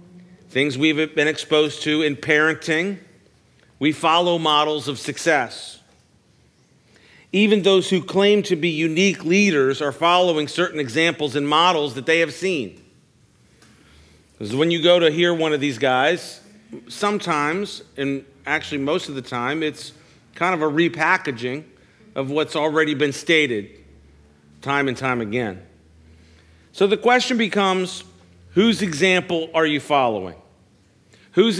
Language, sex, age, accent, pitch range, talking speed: English, male, 50-69, American, 120-170 Hz, 135 wpm